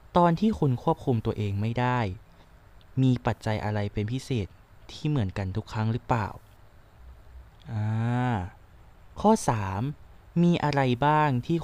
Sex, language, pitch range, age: male, Thai, 105-140 Hz, 20-39